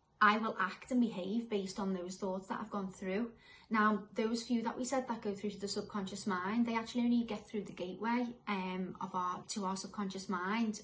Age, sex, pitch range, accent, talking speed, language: 30-49, female, 190-225 Hz, British, 220 wpm, English